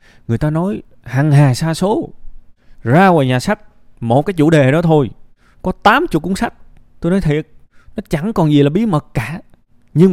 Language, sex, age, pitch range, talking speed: Vietnamese, male, 20-39, 110-155 Hz, 195 wpm